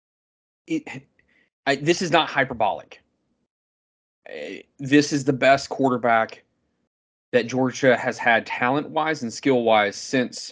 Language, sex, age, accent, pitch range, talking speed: English, male, 20-39, American, 115-135 Hz, 115 wpm